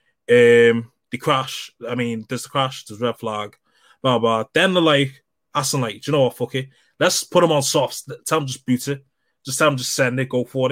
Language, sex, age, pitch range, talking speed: English, male, 20-39, 125-155 Hz, 245 wpm